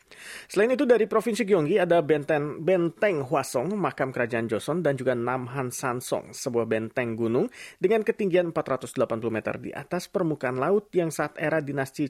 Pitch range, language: 130-180 Hz, Indonesian